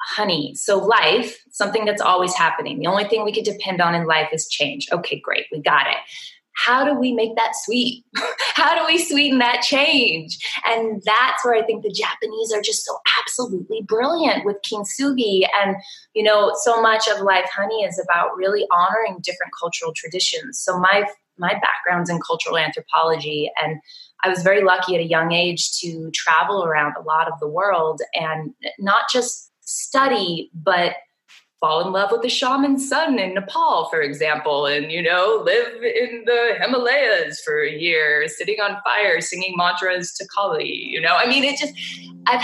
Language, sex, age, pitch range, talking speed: English, female, 20-39, 170-240 Hz, 180 wpm